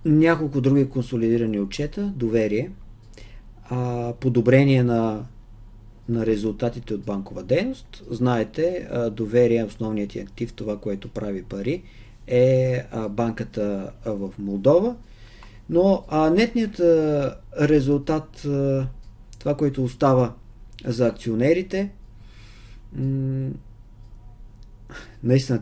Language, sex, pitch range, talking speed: Bulgarian, male, 105-125 Hz, 80 wpm